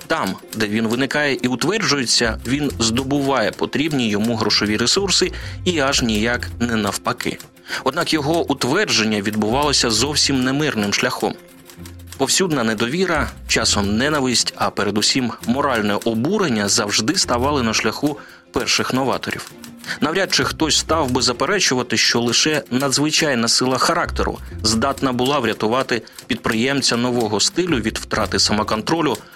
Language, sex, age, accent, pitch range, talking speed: Ukrainian, male, 30-49, native, 105-135 Hz, 120 wpm